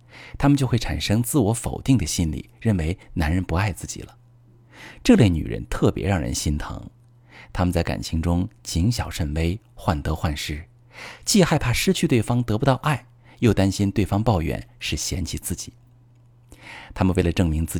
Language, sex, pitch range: Chinese, male, 85-120 Hz